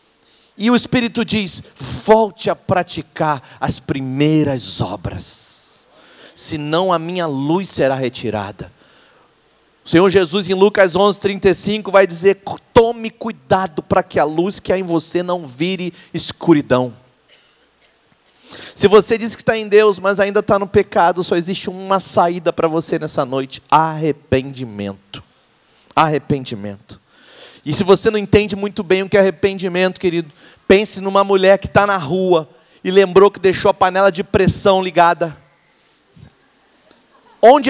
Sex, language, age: male, Portuguese, 30-49